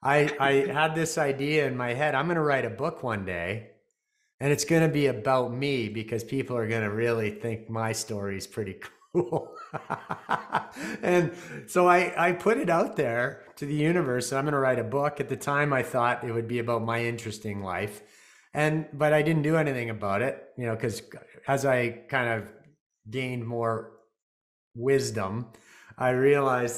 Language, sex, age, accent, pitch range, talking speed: English, male, 30-49, American, 115-150 Hz, 190 wpm